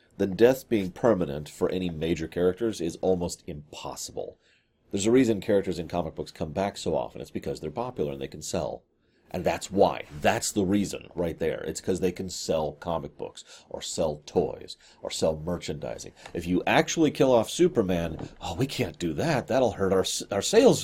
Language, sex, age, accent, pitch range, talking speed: English, male, 40-59, American, 85-110 Hz, 195 wpm